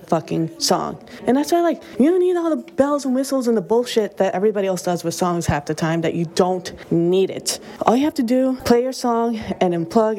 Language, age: English, 20-39